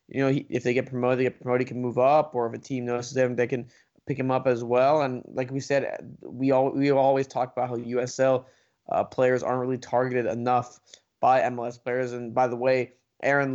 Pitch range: 125-140 Hz